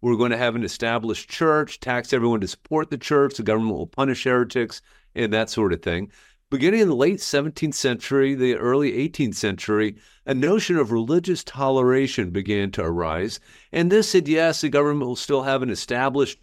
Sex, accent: male, American